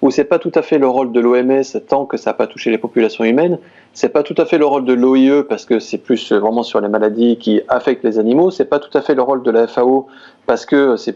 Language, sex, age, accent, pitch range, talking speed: French, male, 30-49, French, 115-165 Hz, 295 wpm